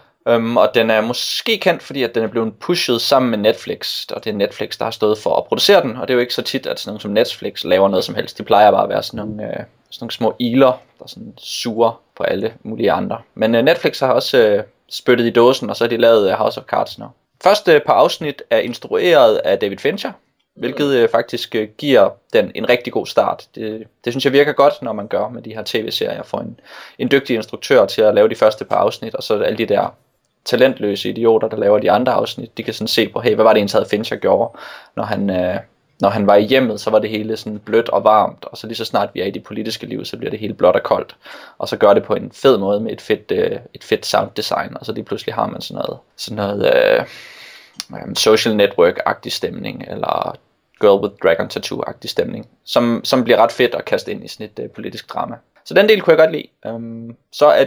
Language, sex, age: Danish, male, 20-39